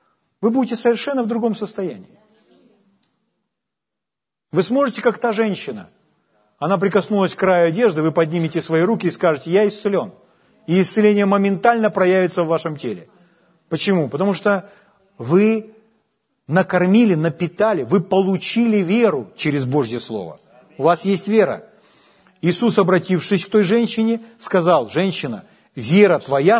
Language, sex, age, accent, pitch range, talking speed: Ukrainian, male, 40-59, native, 155-205 Hz, 125 wpm